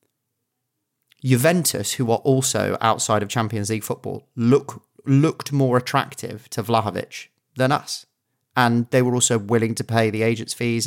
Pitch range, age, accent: 110-130 Hz, 30-49, British